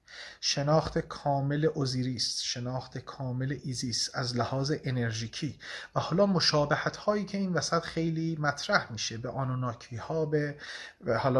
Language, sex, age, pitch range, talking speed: Persian, male, 30-49, 125-165 Hz, 125 wpm